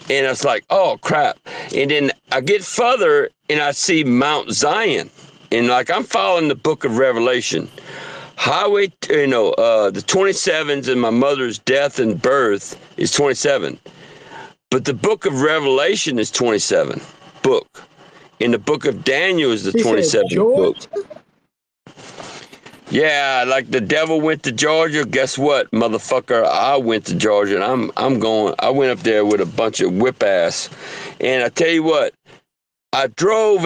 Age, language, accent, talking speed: 50-69, English, American, 160 wpm